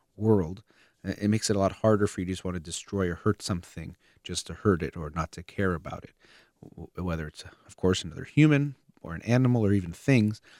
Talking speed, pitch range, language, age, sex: 220 wpm, 90-110 Hz, English, 30-49, male